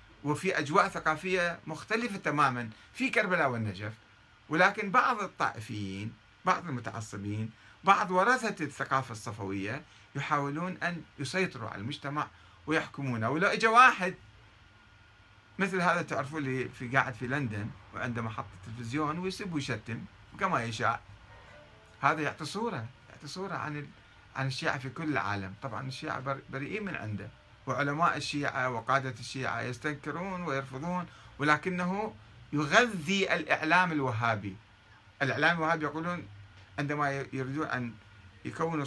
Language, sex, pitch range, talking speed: Arabic, male, 110-165 Hz, 115 wpm